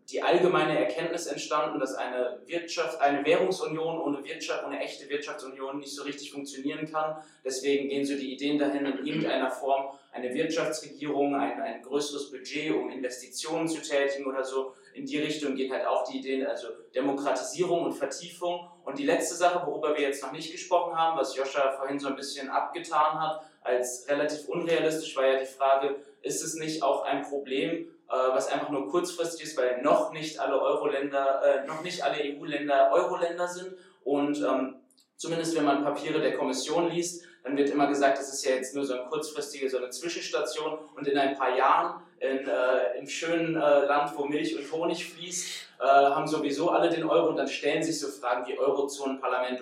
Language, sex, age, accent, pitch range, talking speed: German, male, 20-39, German, 135-155 Hz, 190 wpm